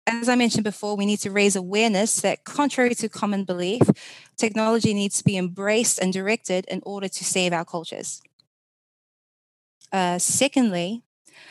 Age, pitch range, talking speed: 20-39, 185-220 Hz, 150 wpm